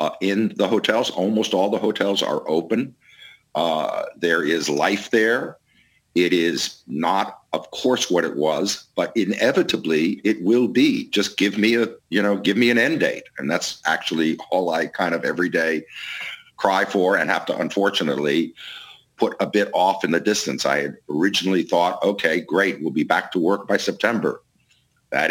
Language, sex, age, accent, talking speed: English, male, 50-69, American, 180 wpm